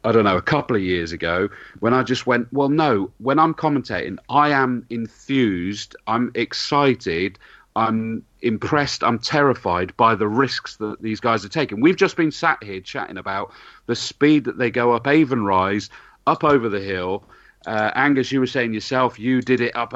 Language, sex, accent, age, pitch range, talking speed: English, male, British, 40-59, 115-145 Hz, 190 wpm